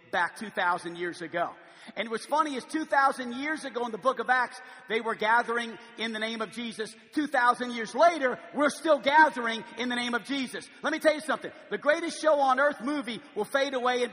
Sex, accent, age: male, American, 50-69